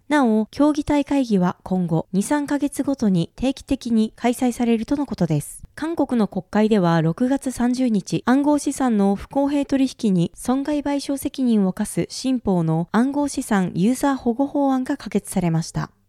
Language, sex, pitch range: Japanese, female, 195-275 Hz